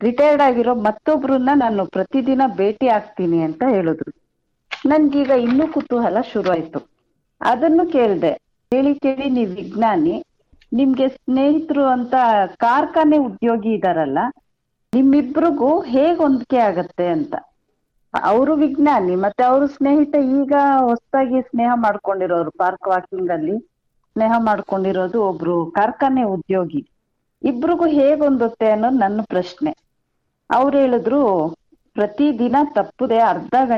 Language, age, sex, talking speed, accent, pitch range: English, 50-69, female, 80 wpm, Indian, 205-285 Hz